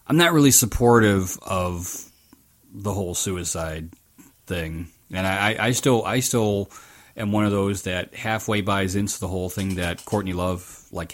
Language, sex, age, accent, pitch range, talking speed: English, male, 30-49, American, 95-110 Hz, 160 wpm